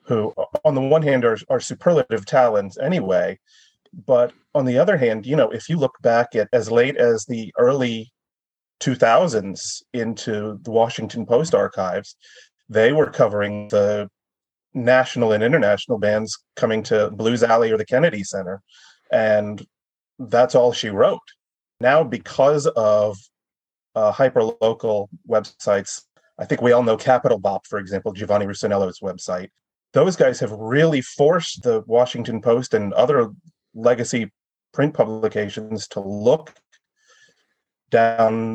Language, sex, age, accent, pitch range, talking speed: English, male, 30-49, American, 105-125 Hz, 140 wpm